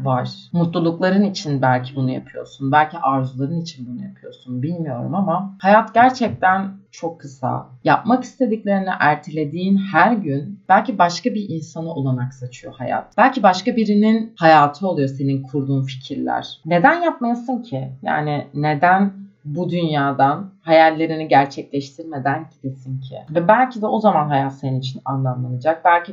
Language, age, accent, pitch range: Turkish, 30-49, native, 135-200 Hz